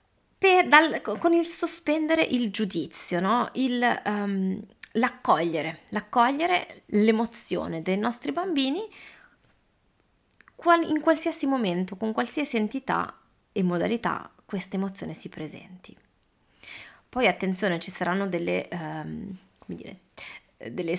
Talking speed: 110 wpm